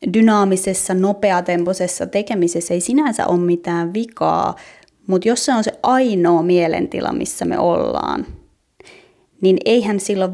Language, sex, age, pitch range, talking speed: Finnish, female, 20-39, 175-205 Hz, 120 wpm